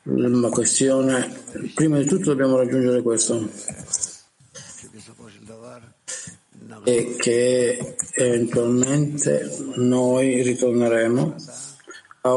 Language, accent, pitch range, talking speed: Italian, native, 115-130 Hz, 65 wpm